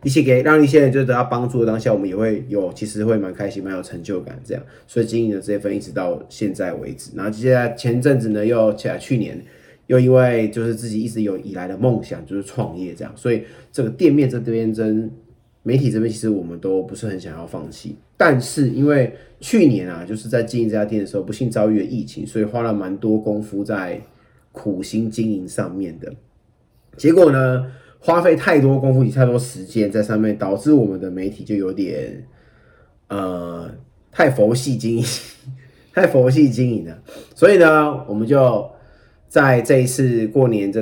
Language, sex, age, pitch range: Chinese, male, 30-49, 105-125 Hz